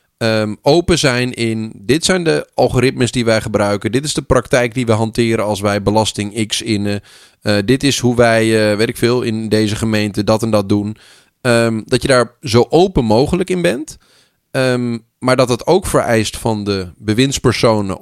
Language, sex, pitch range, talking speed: Dutch, male, 110-145 Hz, 190 wpm